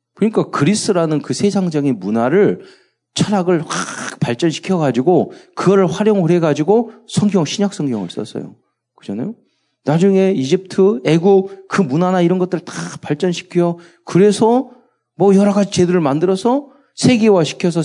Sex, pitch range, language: male, 130-195 Hz, Korean